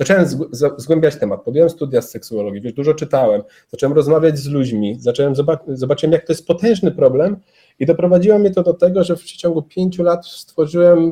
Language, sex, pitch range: Polish, male, 130-165 Hz